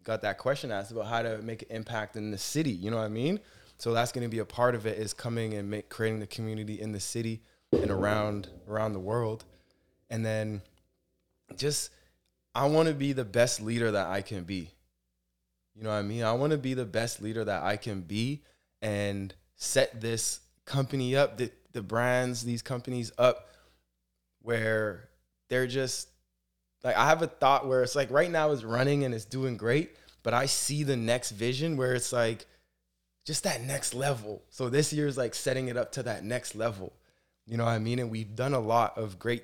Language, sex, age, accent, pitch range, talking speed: English, male, 20-39, American, 105-130 Hz, 215 wpm